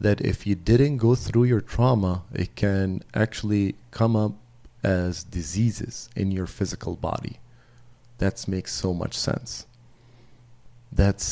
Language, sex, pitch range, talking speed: English, male, 90-110 Hz, 135 wpm